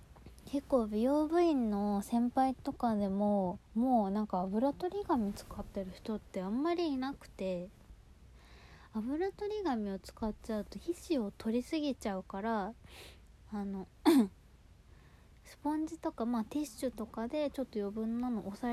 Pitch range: 195-265 Hz